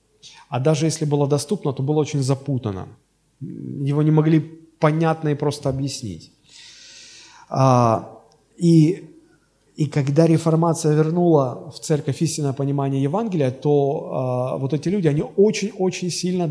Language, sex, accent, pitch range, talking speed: Russian, male, native, 120-155 Hz, 120 wpm